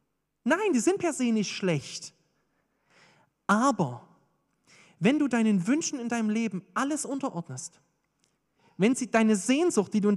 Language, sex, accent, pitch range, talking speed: German, male, German, 160-260 Hz, 140 wpm